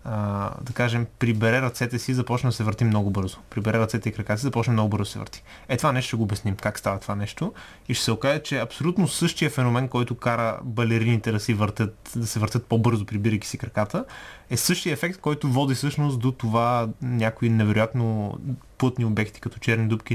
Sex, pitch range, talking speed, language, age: male, 110-125 Hz, 205 wpm, Bulgarian, 20-39